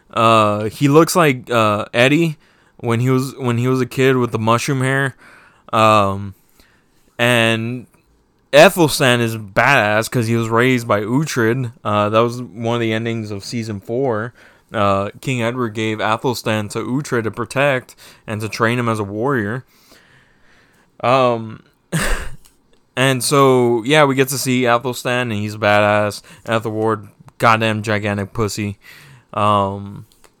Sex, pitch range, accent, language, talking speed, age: male, 110-130 Hz, American, English, 145 wpm, 20-39